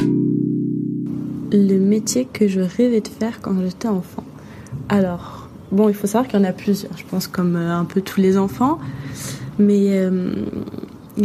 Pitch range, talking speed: 190-220 Hz, 160 wpm